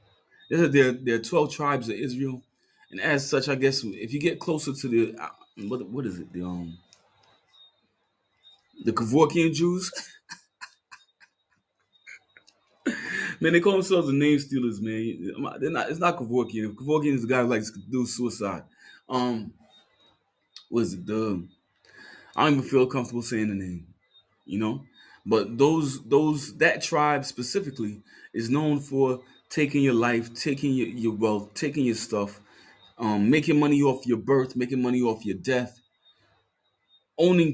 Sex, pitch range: male, 115-145 Hz